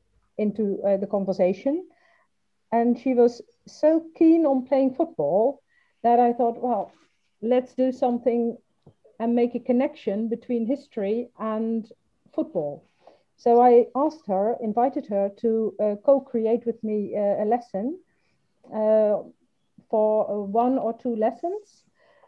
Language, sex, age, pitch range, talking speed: English, female, 50-69, 215-265 Hz, 130 wpm